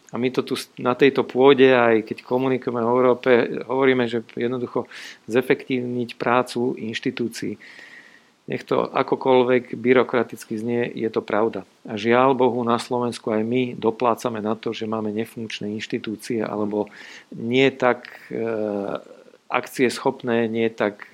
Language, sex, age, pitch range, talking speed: Slovak, male, 40-59, 110-125 Hz, 135 wpm